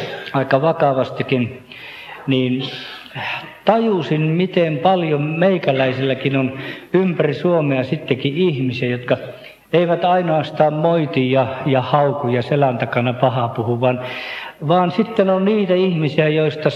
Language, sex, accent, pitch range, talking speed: Finnish, male, native, 130-180 Hz, 105 wpm